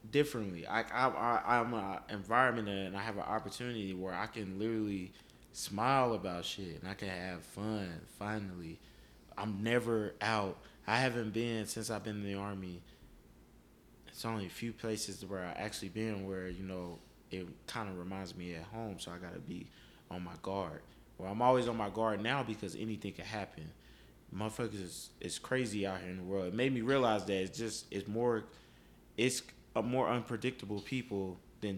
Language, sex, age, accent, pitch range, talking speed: English, male, 20-39, American, 90-110 Hz, 185 wpm